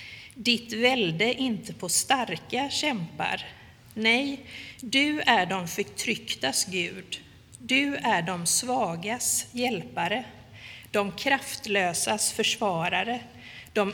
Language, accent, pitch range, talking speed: English, Swedish, 175-240 Hz, 90 wpm